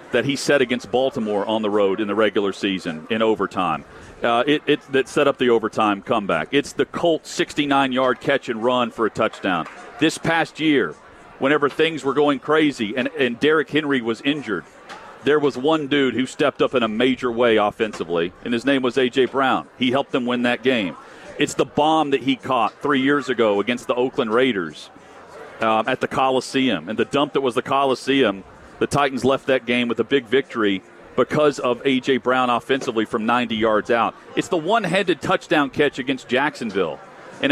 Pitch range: 120-150 Hz